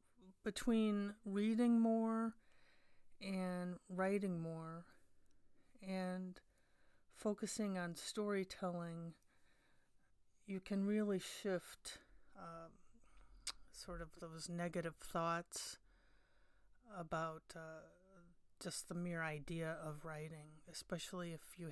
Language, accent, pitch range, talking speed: English, American, 165-190 Hz, 85 wpm